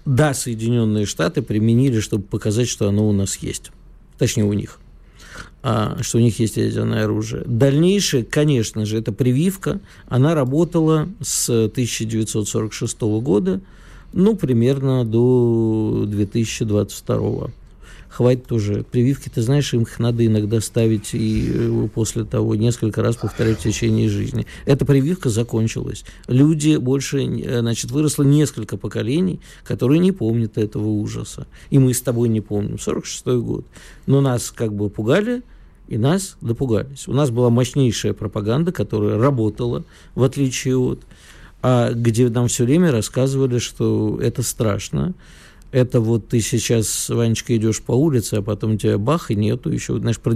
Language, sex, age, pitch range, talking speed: Russian, male, 50-69, 110-135 Hz, 145 wpm